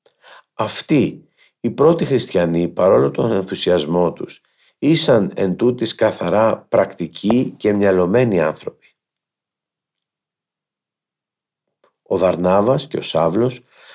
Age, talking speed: 50-69, 85 wpm